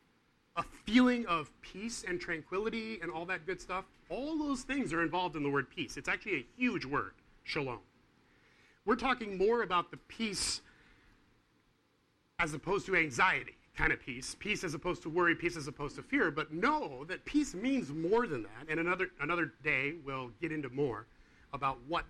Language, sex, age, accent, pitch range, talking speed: English, male, 30-49, American, 150-215 Hz, 180 wpm